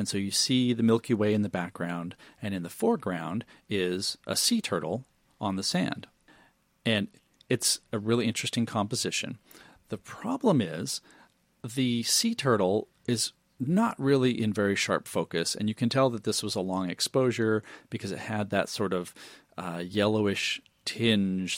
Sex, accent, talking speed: male, American, 165 wpm